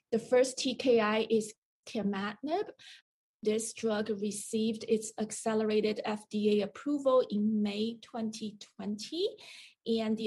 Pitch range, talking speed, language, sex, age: 205-245 Hz, 100 wpm, English, female, 30-49